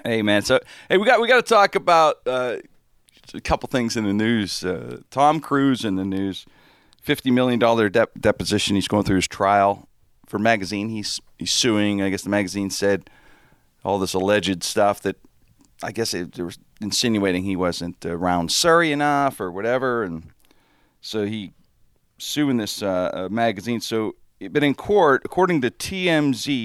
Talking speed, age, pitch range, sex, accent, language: 175 wpm, 40-59, 95-135 Hz, male, American, English